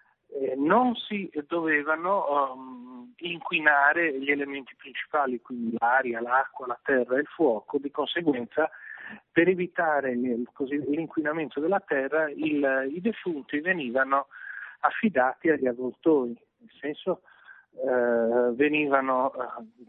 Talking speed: 105 wpm